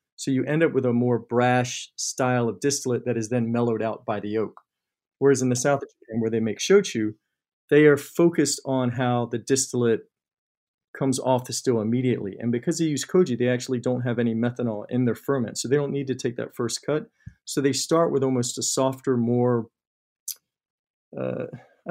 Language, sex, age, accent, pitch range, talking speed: English, male, 40-59, American, 115-135 Hz, 195 wpm